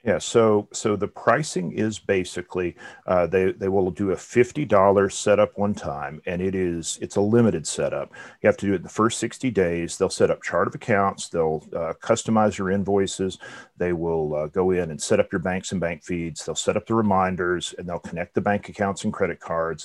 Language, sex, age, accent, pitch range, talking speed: English, male, 40-59, American, 90-110 Hz, 215 wpm